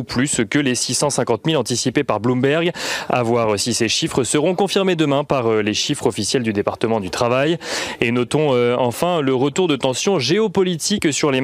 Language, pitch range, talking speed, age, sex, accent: French, 125-165 Hz, 180 wpm, 30-49, male, French